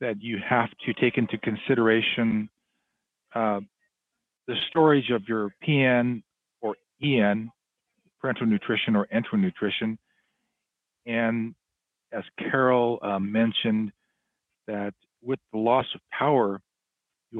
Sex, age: male, 50-69